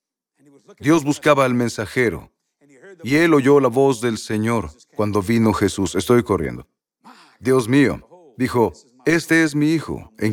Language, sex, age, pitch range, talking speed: Spanish, male, 40-59, 115-155 Hz, 140 wpm